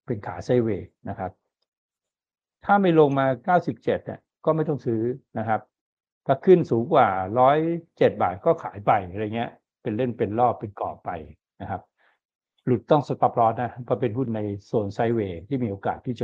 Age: 60-79